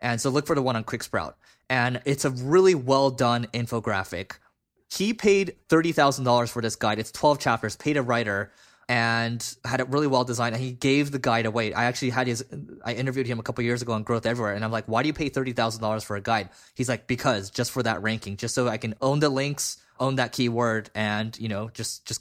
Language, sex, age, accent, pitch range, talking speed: English, male, 20-39, American, 115-140 Hz, 240 wpm